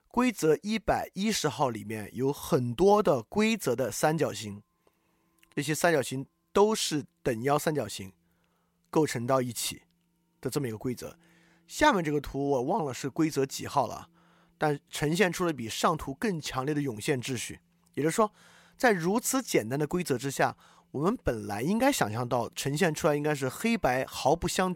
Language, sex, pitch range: Chinese, male, 130-180 Hz